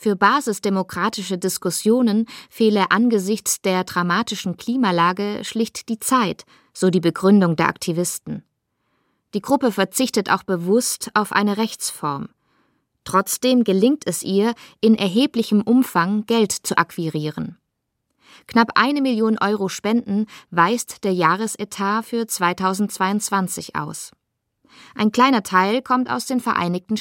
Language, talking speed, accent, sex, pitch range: German, 115 wpm, German, female, 185-230 Hz